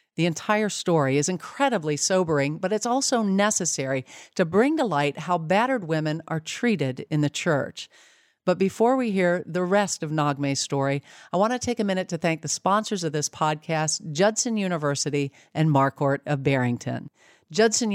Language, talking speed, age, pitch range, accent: English, 170 wpm, 50-69, 155-200 Hz, American